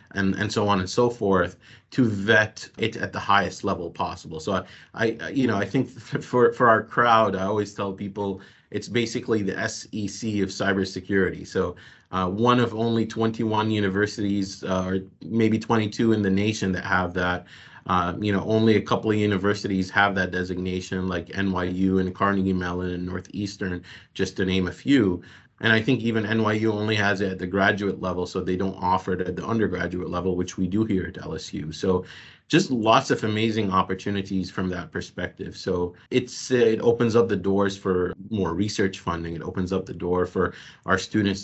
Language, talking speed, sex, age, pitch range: English, 190 wpm, male, 30-49, 90-110 Hz